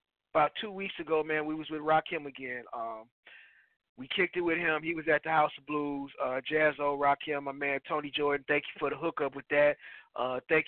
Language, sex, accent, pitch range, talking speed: English, male, American, 150-180 Hz, 225 wpm